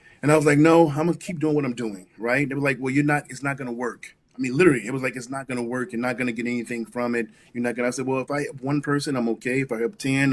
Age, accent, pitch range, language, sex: 20-39, American, 110-130 Hz, English, male